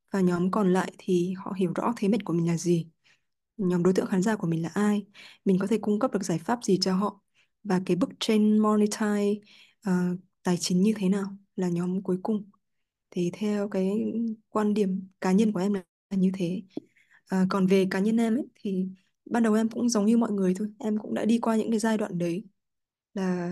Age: 20-39